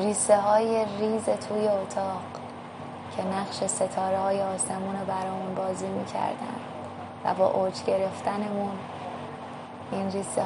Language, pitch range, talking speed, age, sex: Persian, 190-210 Hz, 115 wpm, 20-39, female